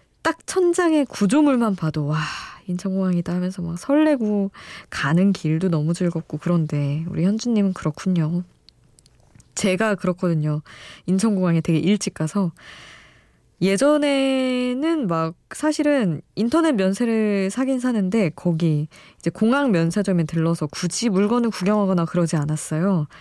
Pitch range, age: 165-215 Hz, 20-39